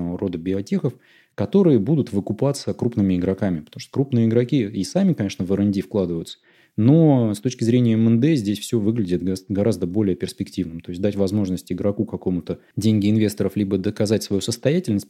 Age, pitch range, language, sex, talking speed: 20-39, 95-115 Hz, Russian, male, 160 wpm